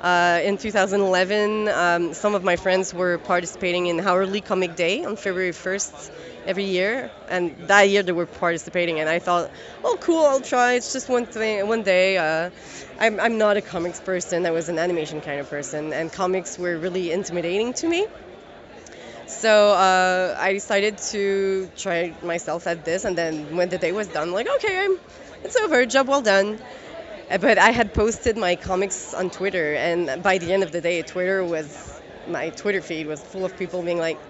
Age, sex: 20-39, female